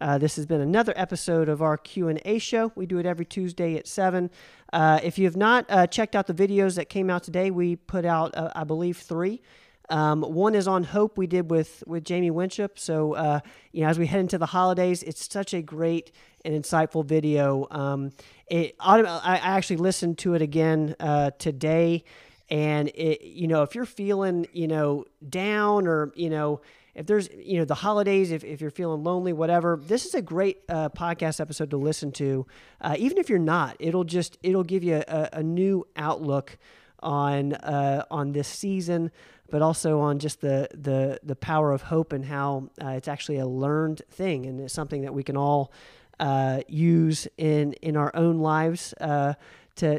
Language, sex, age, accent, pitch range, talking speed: English, male, 40-59, American, 150-180 Hz, 200 wpm